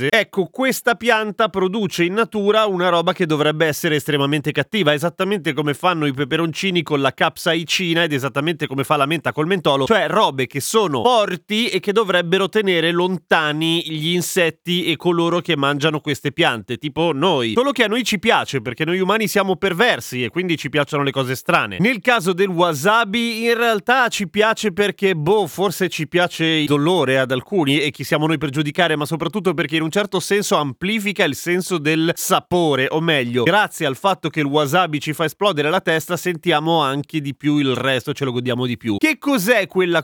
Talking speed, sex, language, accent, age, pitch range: 195 wpm, male, Italian, native, 30-49, 150-195 Hz